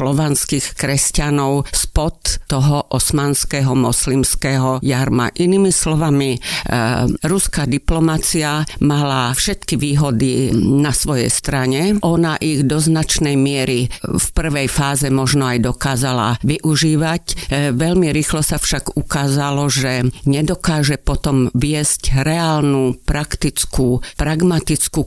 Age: 50-69